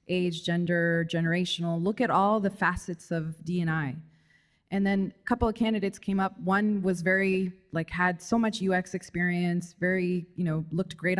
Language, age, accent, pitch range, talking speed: English, 20-39, American, 170-205 Hz, 170 wpm